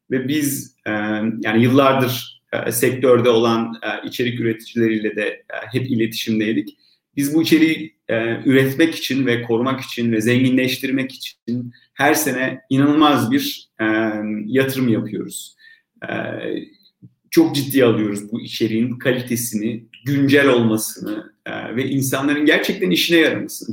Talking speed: 120 wpm